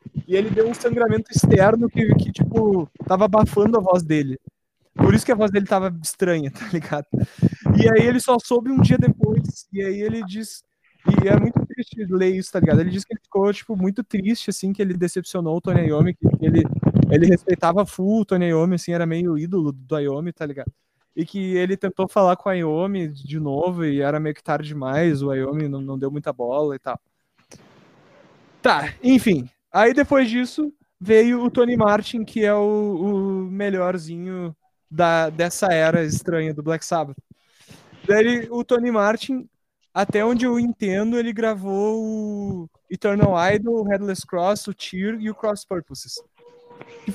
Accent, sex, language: Brazilian, male, Portuguese